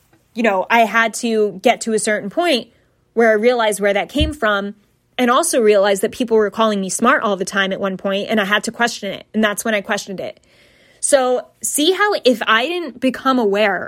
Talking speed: 225 wpm